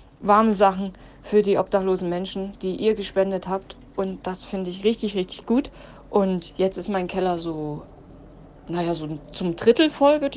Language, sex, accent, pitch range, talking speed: German, female, German, 175-205 Hz, 170 wpm